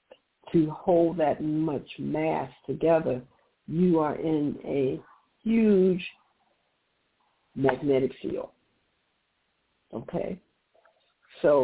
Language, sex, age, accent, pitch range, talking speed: English, female, 60-79, American, 130-165 Hz, 75 wpm